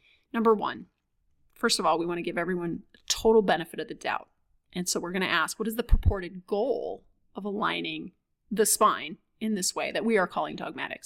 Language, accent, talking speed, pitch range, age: English, American, 195 wpm, 215-275 Hz, 30-49